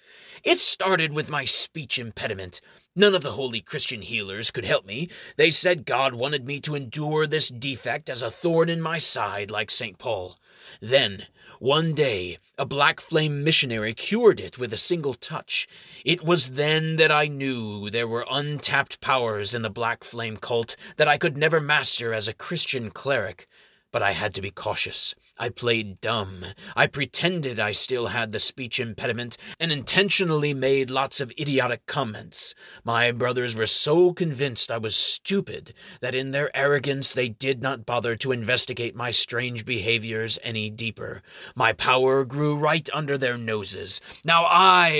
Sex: male